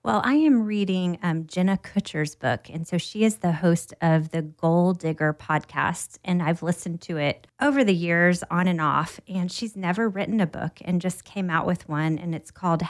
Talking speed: 210 wpm